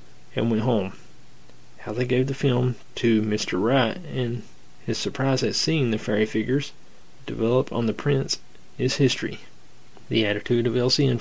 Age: 30-49